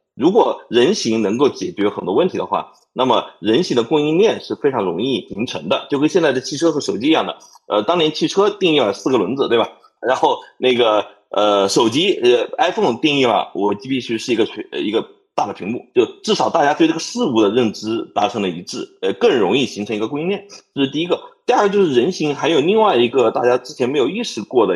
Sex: male